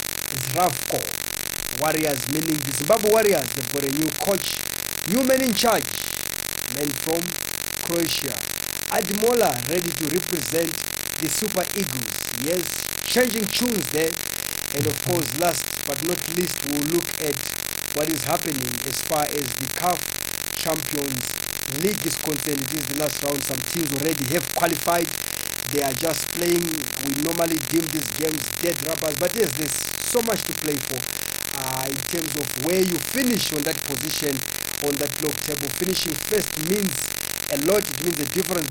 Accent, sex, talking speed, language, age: South African, male, 160 wpm, English, 50-69